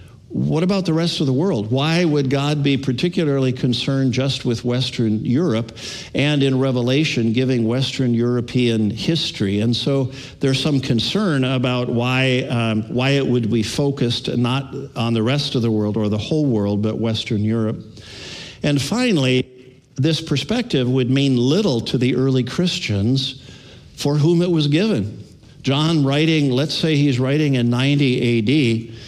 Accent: American